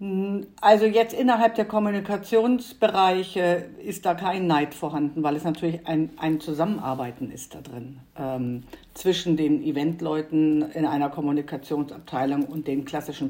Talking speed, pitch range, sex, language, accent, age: 130 wpm, 160-220 Hz, female, German, German, 50-69